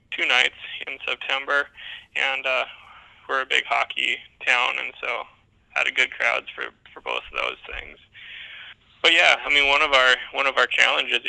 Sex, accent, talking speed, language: male, American, 180 wpm, English